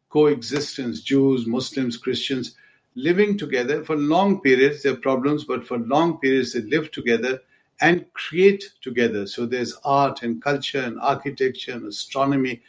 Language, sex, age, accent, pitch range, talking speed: English, male, 70-89, Indian, 120-145 Hz, 140 wpm